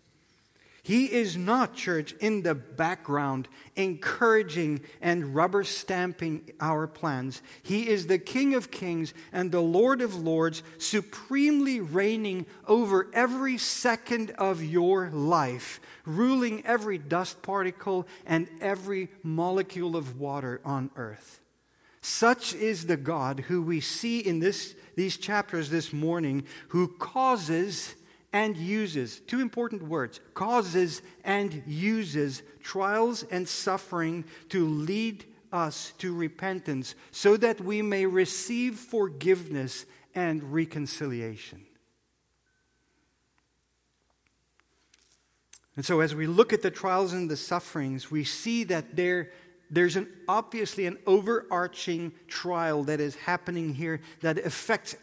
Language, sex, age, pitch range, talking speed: English, male, 50-69, 160-205 Hz, 115 wpm